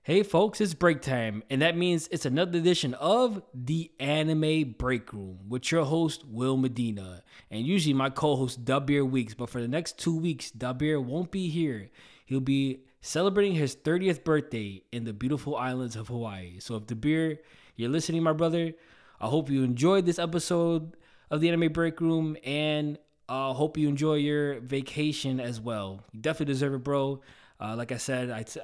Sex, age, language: male, 20-39, English